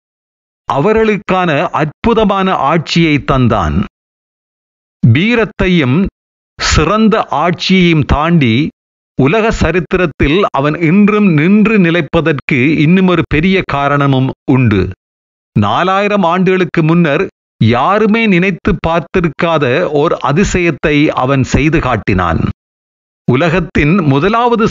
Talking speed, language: 80 wpm, Tamil